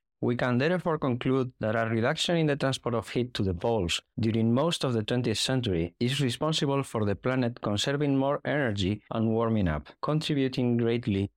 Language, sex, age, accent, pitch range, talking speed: English, male, 50-69, Spanish, 115-155 Hz, 180 wpm